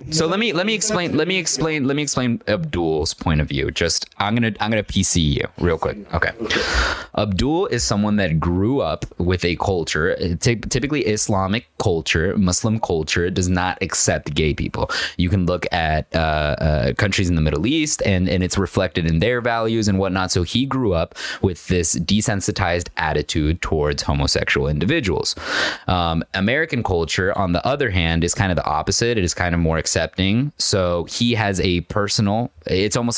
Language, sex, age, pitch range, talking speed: English, male, 20-39, 80-105 Hz, 185 wpm